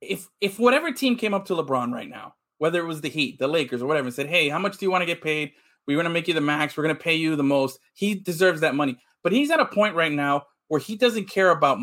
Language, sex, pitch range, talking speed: English, male, 155-210 Hz, 305 wpm